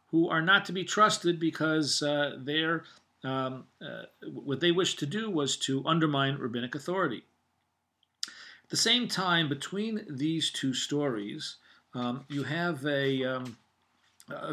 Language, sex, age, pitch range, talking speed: English, male, 50-69, 130-175 Hz, 145 wpm